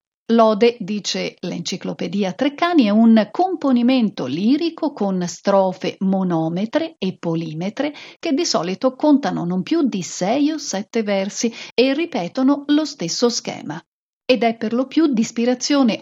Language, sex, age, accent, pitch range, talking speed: Italian, female, 50-69, native, 190-260 Hz, 135 wpm